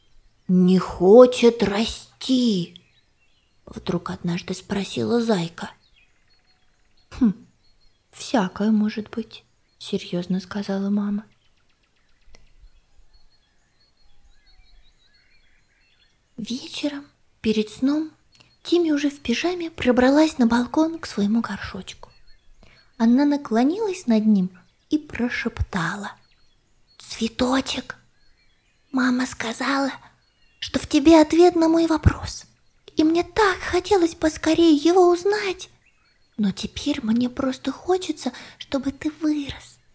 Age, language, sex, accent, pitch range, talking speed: 20-39, Russian, female, native, 225-315 Hz, 85 wpm